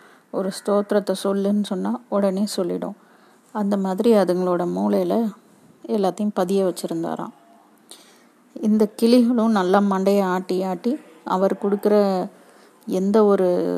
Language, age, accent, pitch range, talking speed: Tamil, 30-49, native, 180-210 Hz, 100 wpm